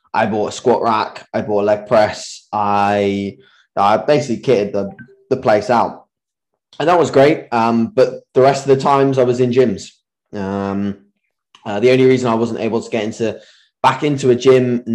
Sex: male